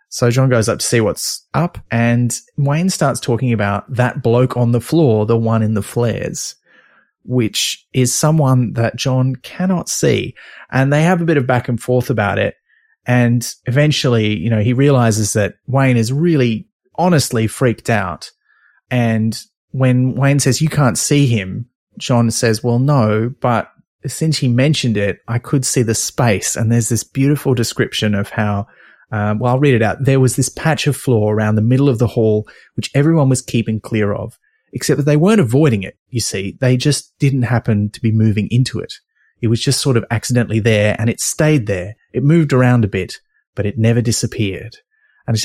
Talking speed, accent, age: 195 wpm, Australian, 30-49